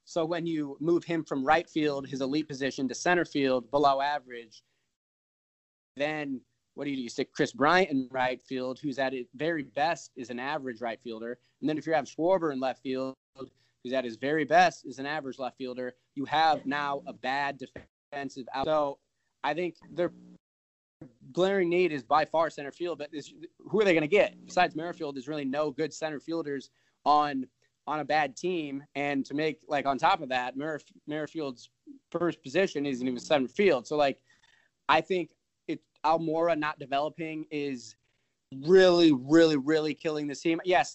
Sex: male